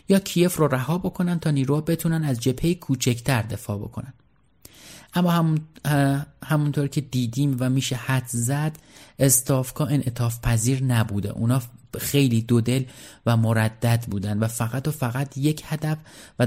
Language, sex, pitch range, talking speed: Persian, male, 115-150 Hz, 145 wpm